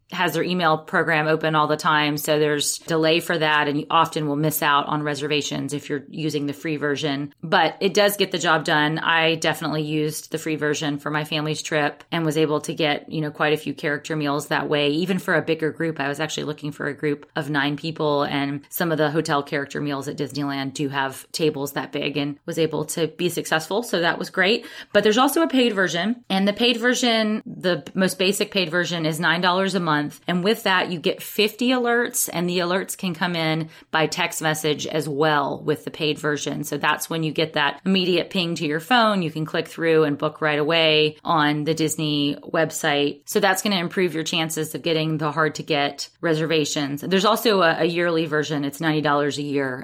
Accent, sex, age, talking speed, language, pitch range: American, female, 20-39, 220 wpm, English, 150-175 Hz